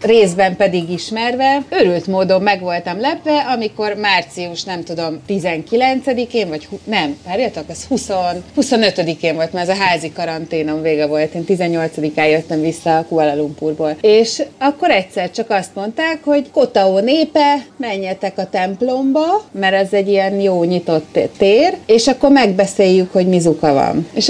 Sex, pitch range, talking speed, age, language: female, 180-255 Hz, 150 wpm, 30-49, Hungarian